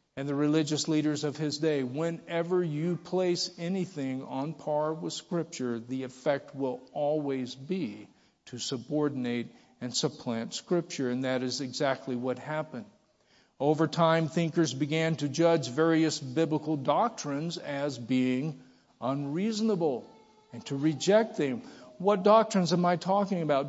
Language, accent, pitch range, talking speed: English, American, 140-175 Hz, 135 wpm